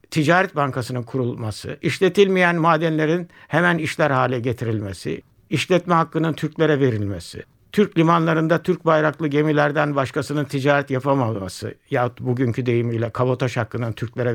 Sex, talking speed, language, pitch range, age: male, 115 wpm, Turkish, 125-170 Hz, 60-79